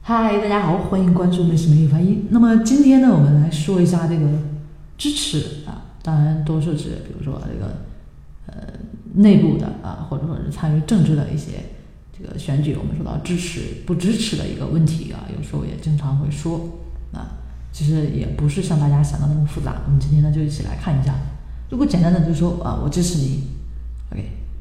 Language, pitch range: Chinese, 140-165 Hz